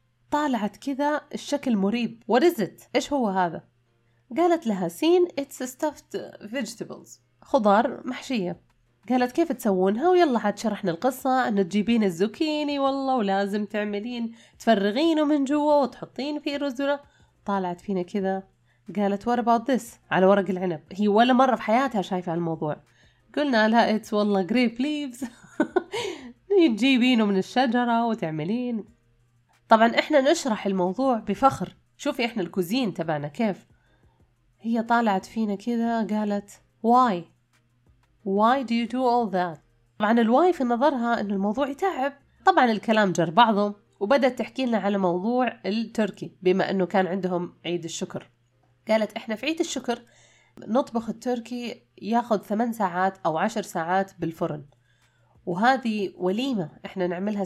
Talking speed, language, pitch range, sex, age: 130 wpm, Arabic, 185-255 Hz, female, 20-39